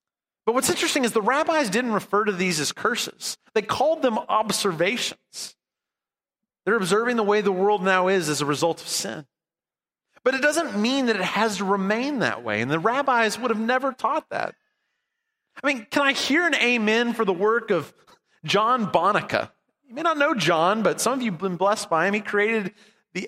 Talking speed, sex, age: 200 wpm, male, 30-49